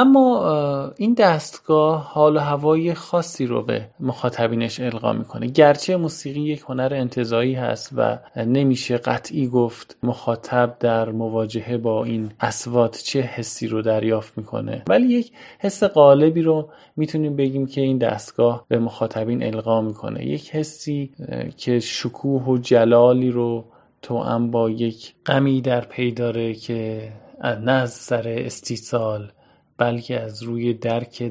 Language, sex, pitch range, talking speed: Persian, male, 110-130 Hz, 130 wpm